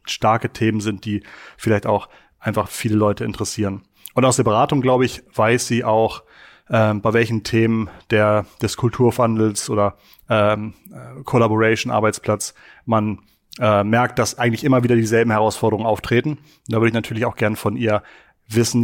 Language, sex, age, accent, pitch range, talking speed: German, male, 30-49, German, 110-120 Hz, 155 wpm